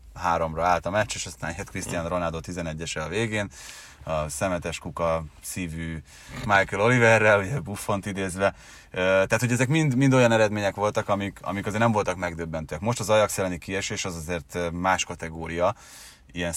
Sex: male